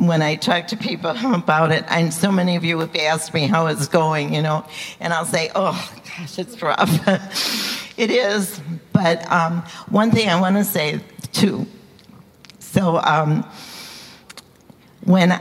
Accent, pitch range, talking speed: American, 160-185 Hz, 155 wpm